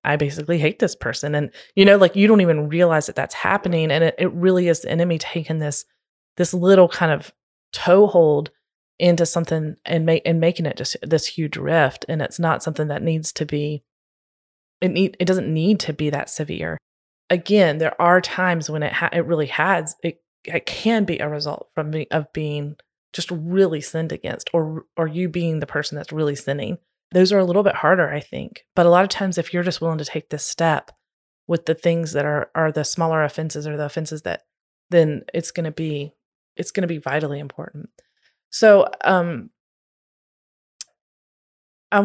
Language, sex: English, female